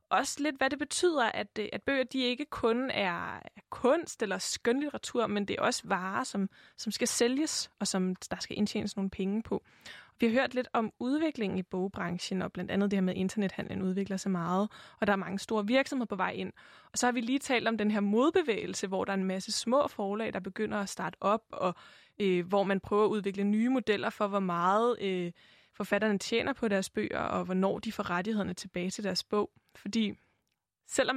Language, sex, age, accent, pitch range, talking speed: Danish, female, 20-39, native, 195-245 Hz, 215 wpm